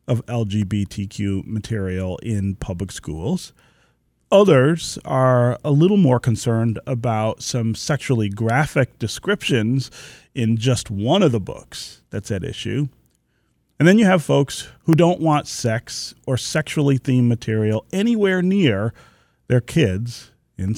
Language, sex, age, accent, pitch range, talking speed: English, male, 40-59, American, 110-145 Hz, 125 wpm